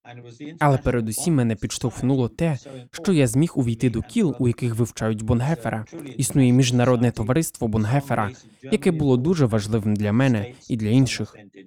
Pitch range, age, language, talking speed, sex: 115-140 Hz, 20-39, Russian, 145 wpm, male